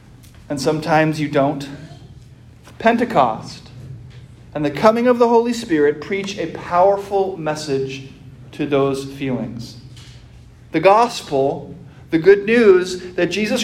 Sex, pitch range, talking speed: male, 145-230 Hz, 115 wpm